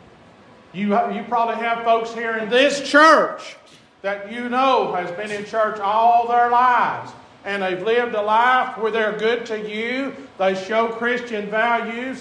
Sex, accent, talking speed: male, American, 155 wpm